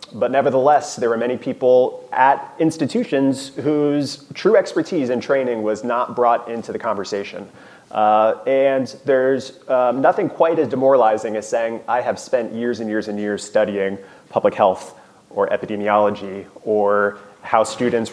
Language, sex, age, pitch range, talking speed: English, male, 30-49, 105-140 Hz, 150 wpm